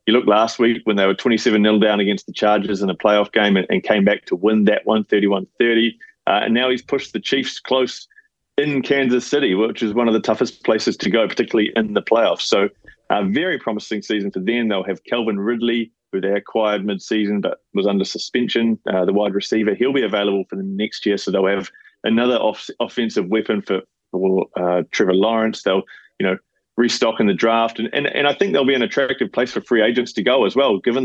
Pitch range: 100-120 Hz